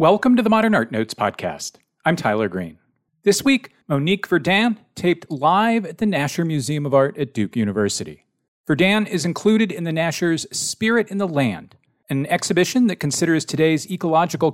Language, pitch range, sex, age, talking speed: English, 125-185 Hz, male, 40-59, 170 wpm